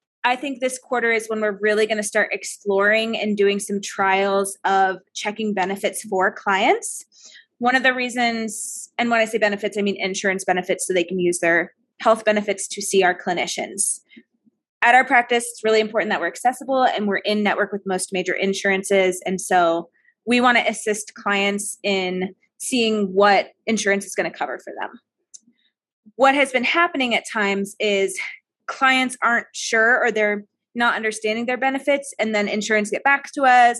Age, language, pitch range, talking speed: 20-39, English, 200-245 Hz, 180 wpm